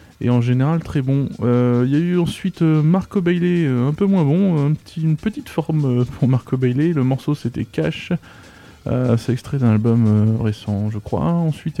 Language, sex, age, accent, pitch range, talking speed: English, male, 20-39, French, 120-155 Hz, 200 wpm